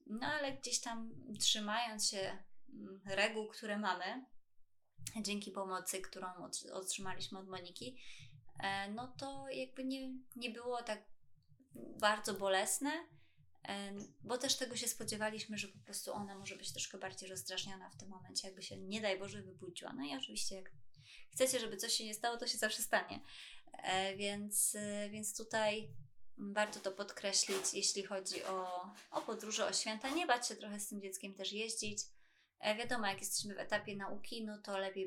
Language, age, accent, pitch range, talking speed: Polish, 20-39, native, 190-225 Hz, 160 wpm